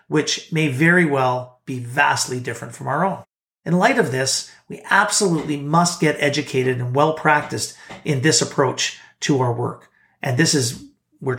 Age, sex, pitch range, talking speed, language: 40-59, male, 135-160 Hz, 165 wpm, English